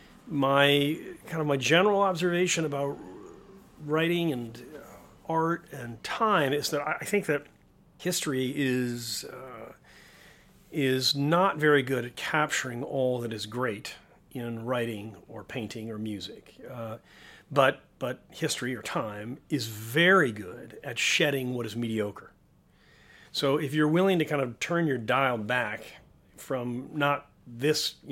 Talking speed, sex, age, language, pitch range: 140 wpm, male, 40-59, English, 120-150 Hz